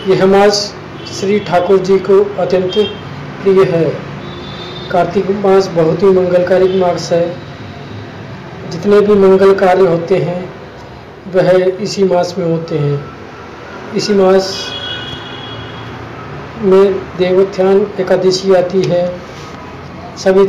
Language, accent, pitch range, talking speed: Hindi, native, 150-195 Hz, 105 wpm